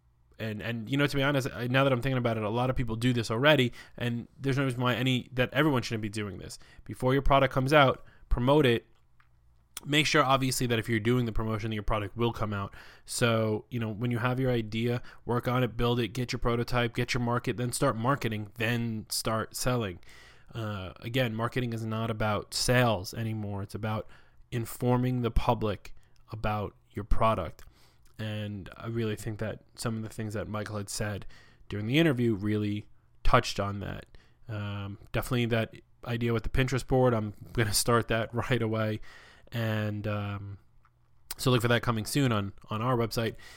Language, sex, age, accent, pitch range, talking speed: English, male, 20-39, American, 105-125 Hz, 195 wpm